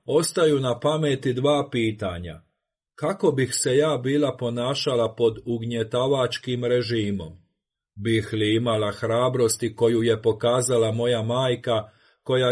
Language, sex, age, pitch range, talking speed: Croatian, male, 40-59, 115-130 Hz, 115 wpm